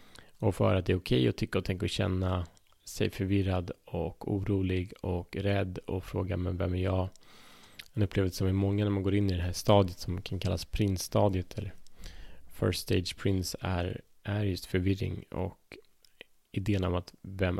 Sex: male